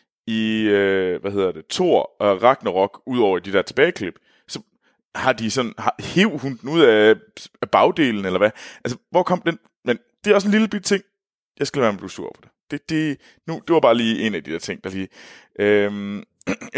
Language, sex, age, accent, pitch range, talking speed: Danish, male, 20-39, native, 105-165 Hz, 220 wpm